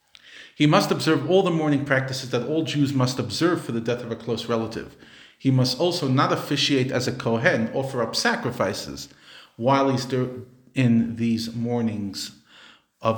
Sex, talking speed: male, 165 wpm